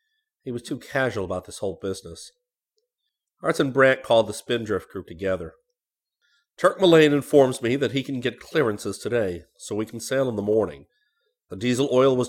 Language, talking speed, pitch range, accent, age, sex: English, 180 wpm, 100-145 Hz, American, 40-59, male